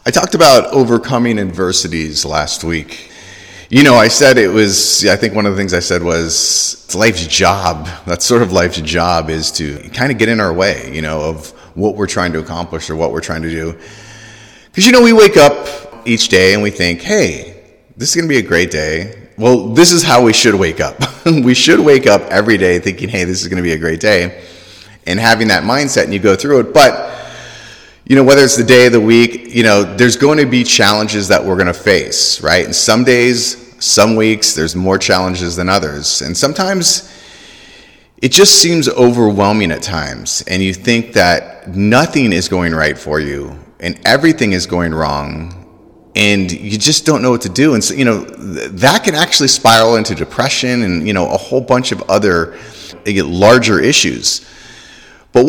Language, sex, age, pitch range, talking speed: English, male, 30-49, 85-120 Hz, 205 wpm